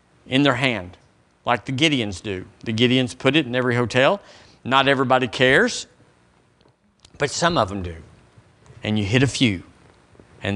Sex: male